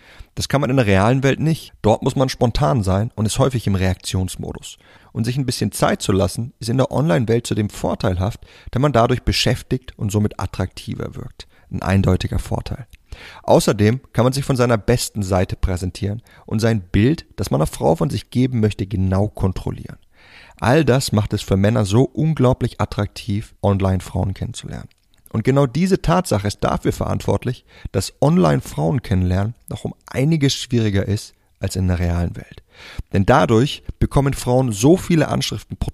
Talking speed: 175 wpm